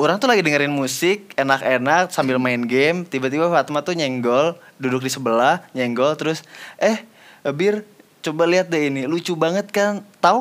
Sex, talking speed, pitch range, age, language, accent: male, 160 wpm, 140-215 Hz, 20-39, Indonesian, native